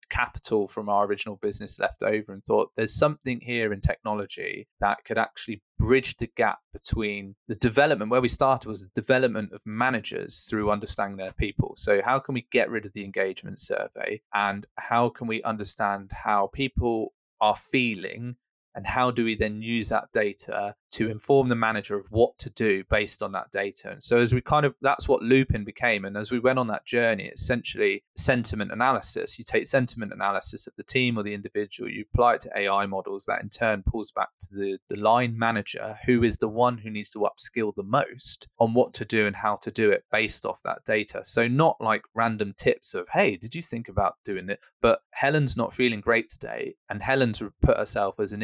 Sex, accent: male, British